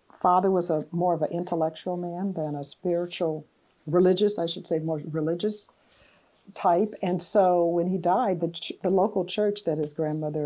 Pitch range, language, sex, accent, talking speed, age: 165-210 Hz, English, female, American, 180 wpm, 60-79